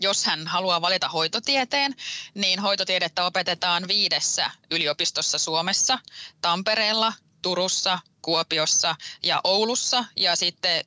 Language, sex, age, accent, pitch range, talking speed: Finnish, female, 20-39, native, 170-205 Hz, 100 wpm